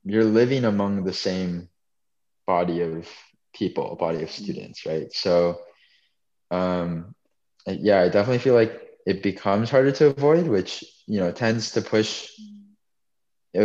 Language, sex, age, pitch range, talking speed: English, male, 20-39, 85-105 Hz, 130 wpm